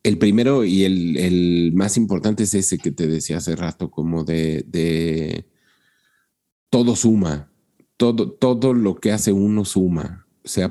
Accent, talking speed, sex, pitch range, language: Mexican, 150 wpm, male, 85-105 Hz, Spanish